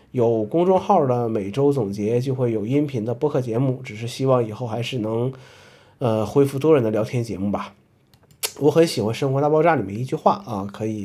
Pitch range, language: 110-145 Hz, Chinese